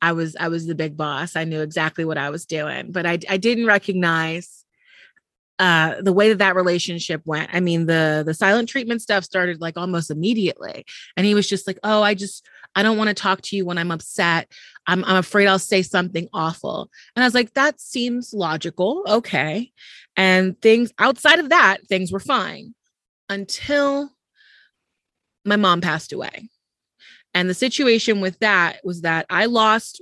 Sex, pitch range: female, 165-215 Hz